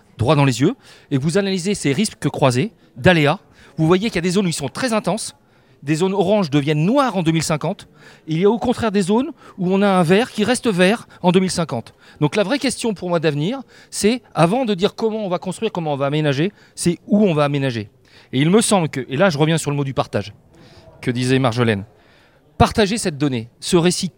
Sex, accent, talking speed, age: male, French, 235 wpm, 40-59